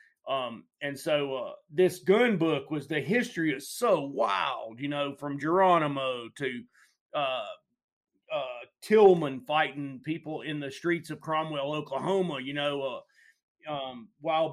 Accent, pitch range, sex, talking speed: American, 145-180 Hz, male, 140 wpm